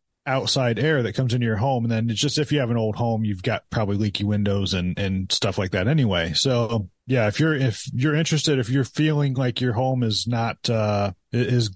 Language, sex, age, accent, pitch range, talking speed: English, male, 30-49, American, 105-125 Hz, 230 wpm